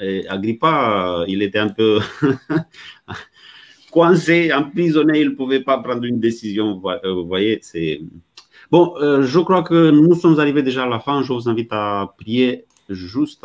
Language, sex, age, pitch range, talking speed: French, male, 30-49, 90-115 Hz, 165 wpm